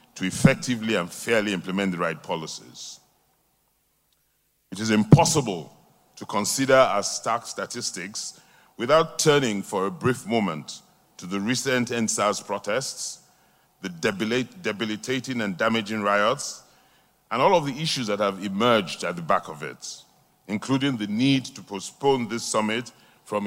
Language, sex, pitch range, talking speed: English, male, 100-130 Hz, 135 wpm